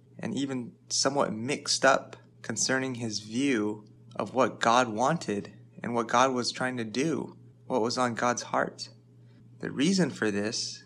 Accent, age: American, 20-39